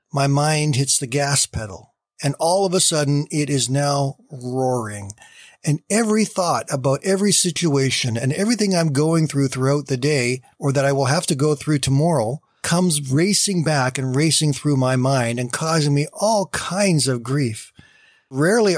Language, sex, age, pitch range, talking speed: English, male, 40-59, 130-155 Hz, 175 wpm